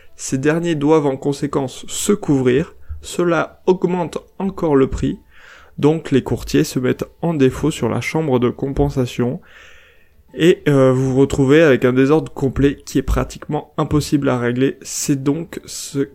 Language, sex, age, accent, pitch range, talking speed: French, male, 20-39, French, 130-165 Hz, 155 wpm